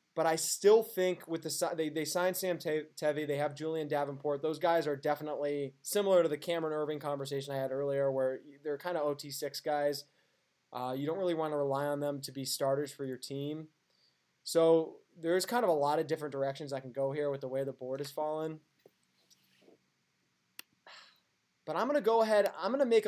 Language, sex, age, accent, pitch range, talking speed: English, male, 20-39, American, 140-165 Hz, 205 wpm